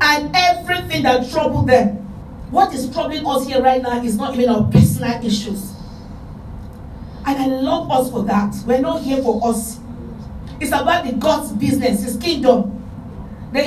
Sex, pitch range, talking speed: female, 230-305 Hz, 165 wpm